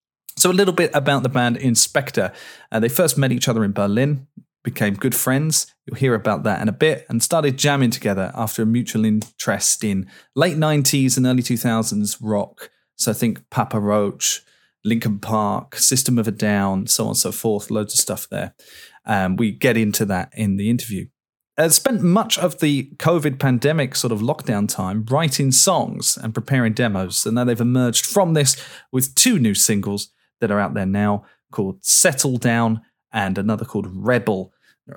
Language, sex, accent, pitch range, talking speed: English, male, British, 110-145 Hz, 185 wpm